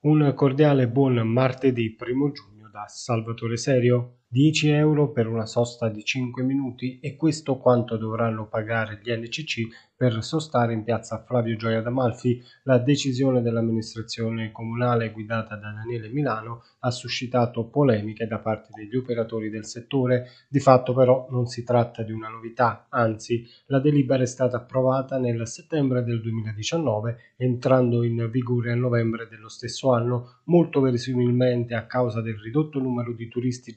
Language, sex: Italian, male